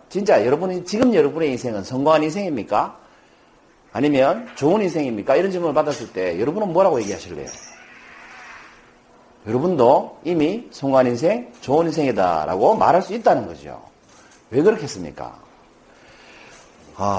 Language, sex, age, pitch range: Korean, male, 40-59, 135-200 Hz